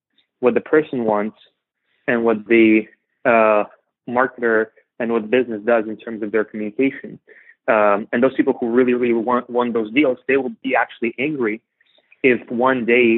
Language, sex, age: English, male, 20-39